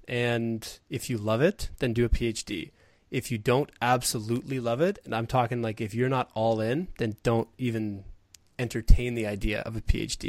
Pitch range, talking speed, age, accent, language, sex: 110-130 Hz, 190 wpm, 20-39, American, English, male